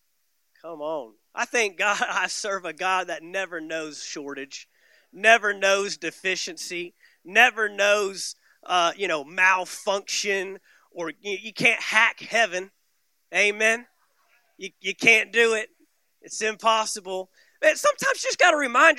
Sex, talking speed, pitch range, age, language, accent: male, 130 wpm, 200-295 Hz, 30-49, English, American